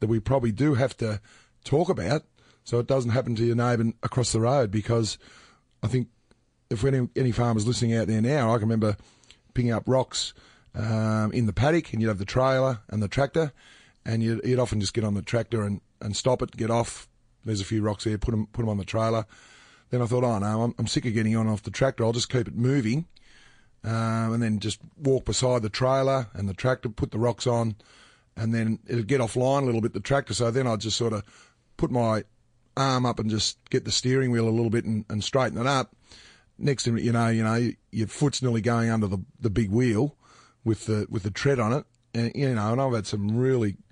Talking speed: 240 wpm